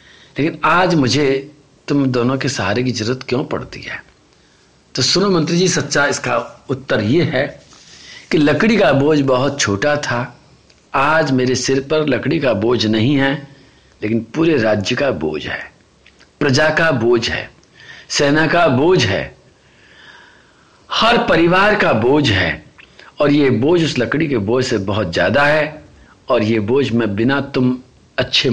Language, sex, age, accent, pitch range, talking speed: Hindi, male, 50-69, native, 115-145 Hz, 155 wpm